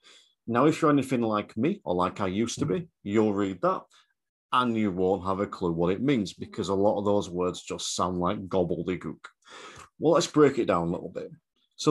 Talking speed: 215 wpm